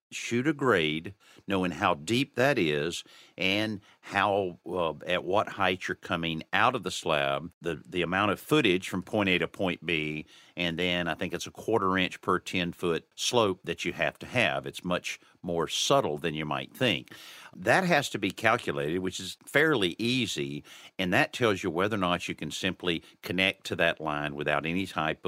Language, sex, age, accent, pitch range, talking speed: English, male, 50-69, American, 80-100 Hz, 195 wpm